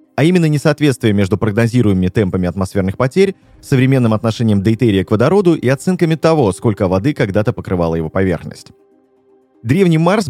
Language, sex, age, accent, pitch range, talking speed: Russian, male, 20-39, native, 105-150 Hz, 140 wpm